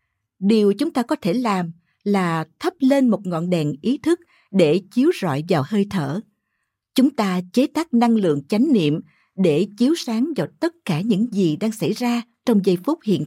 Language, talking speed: Vietnamese, 195 wpm